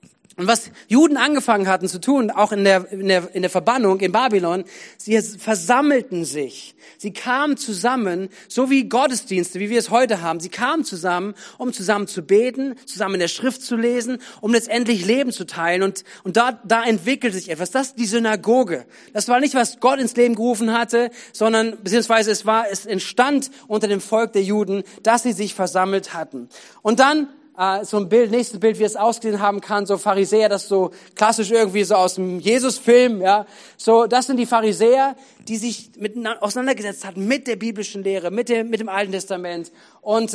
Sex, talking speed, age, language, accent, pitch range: male, 195 wpm, 40-59, German, German, 195-240 Hz